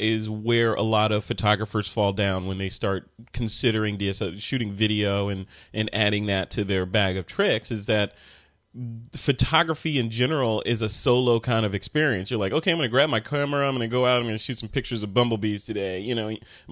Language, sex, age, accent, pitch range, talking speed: English, male, 30-49, American, 110-135 Hz, 220 wpm